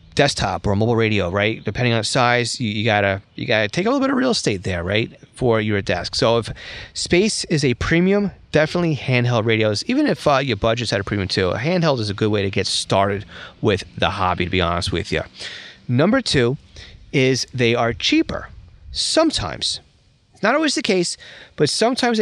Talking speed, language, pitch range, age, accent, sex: 205 wpm, English, 100-140 Hz, 30-49, American, male